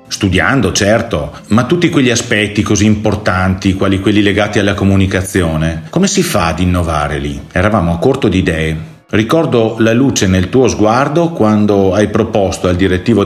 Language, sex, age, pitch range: Italian, male, 40-59, 95-120 Hz